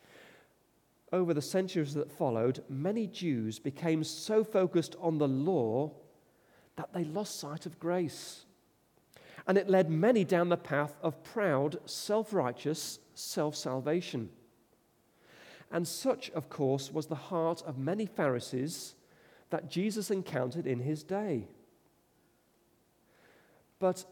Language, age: English, 40-59